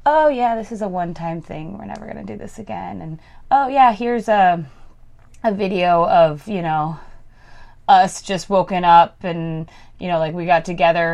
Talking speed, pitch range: 190 wpm, 165-195 Hz